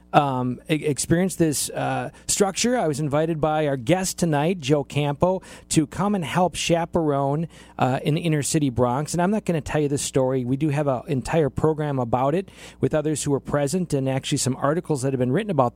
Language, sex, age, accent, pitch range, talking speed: English, male, 40-59, American, 140-175 Hz, 215 wpm